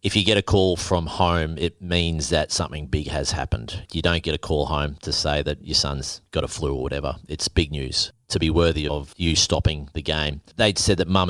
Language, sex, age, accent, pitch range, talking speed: English, male, 30-49, Australian, 80-95 Hz, 240 wpm